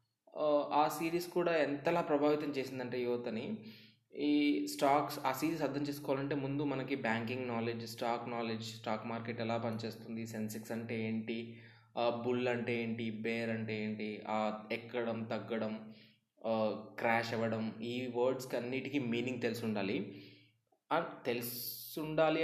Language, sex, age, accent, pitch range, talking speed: Telugu, male, 20-39, native, 115-145 Hz, 115 wpm